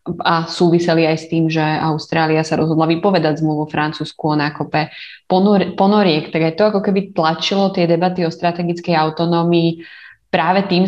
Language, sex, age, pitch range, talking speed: Slovak, female, 20-39, 165-185 Hz, 165 wpm